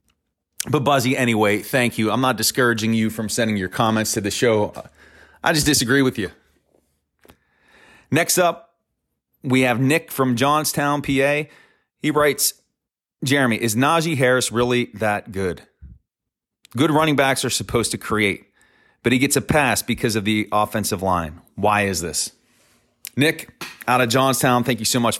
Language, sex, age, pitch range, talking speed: English, male, 30-49, 110-140 Hz, 155 wpm